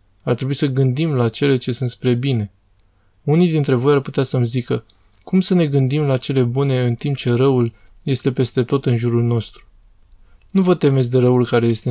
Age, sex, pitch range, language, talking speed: 20-39, male, 115-135 Hz, Romanian, 205 wpm